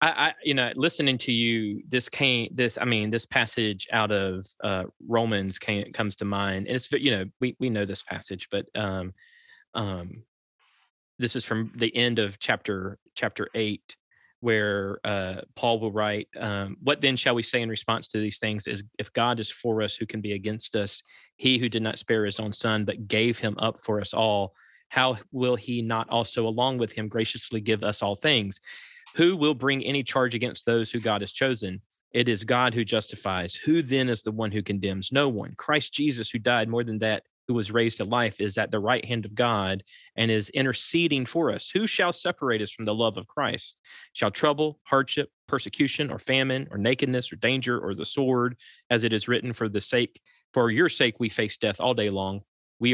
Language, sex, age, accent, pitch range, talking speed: English, male, 20-39, American, 105-125 Hz, 205 wpm